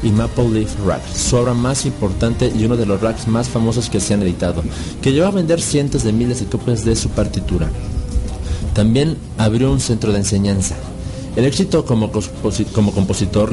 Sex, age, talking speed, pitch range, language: male, 40-59, 180 wpm, 100-125 Hz, Spanish